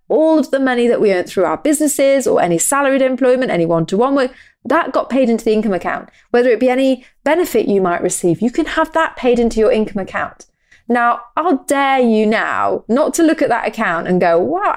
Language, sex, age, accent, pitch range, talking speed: English, female, 30-49, British, 195-290 Hz, 230 wpm